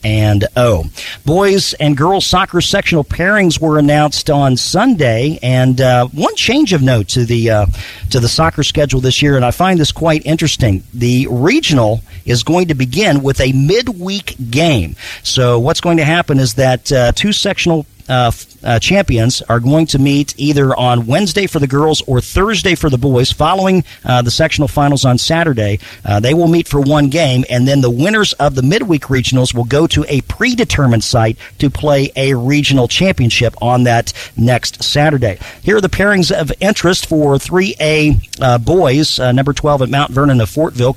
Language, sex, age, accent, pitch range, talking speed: English, male, 50-69, American, 125-160 Hz, 185 wpm